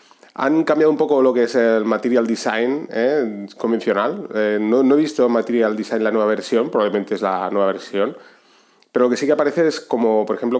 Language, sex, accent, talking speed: Spanish, male, Spanish, 210 wpm